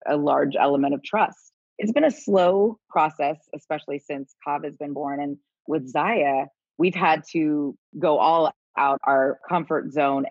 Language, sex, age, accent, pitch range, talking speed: English, female, 20-39, American, 135-150 Hz, 165 wpm